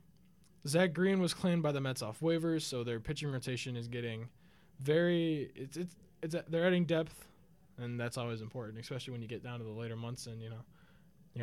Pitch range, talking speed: 125-170 Hz, 210 wpm